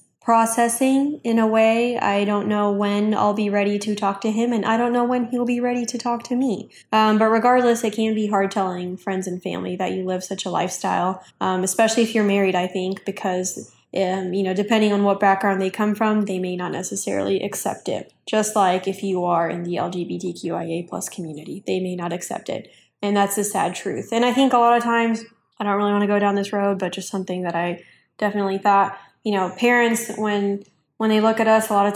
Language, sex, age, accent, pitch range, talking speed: English, female, 10-29, American, 185-220 Hz, 230 wpm